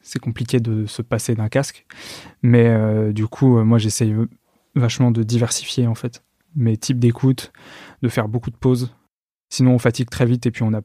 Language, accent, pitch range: French, French, 115-130 Hz